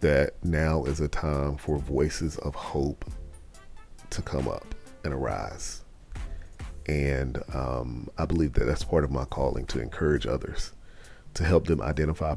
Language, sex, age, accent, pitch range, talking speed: English, male, 40-59, American, 70-85 Hz, 150 wpm